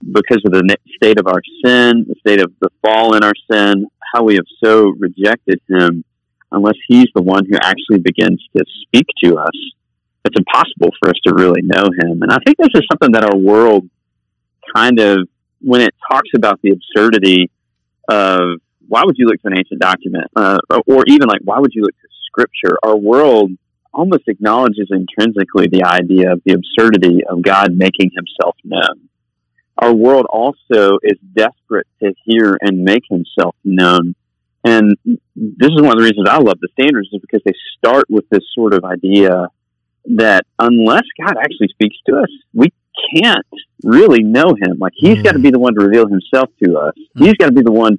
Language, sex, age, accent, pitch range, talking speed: English, male, 40-59, American, 90-115 Hz, 190 wpm